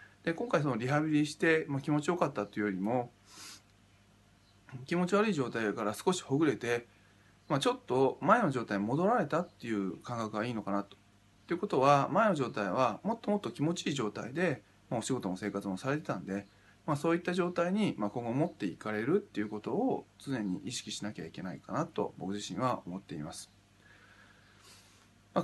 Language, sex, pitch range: Japanese, male, 100-150 Hz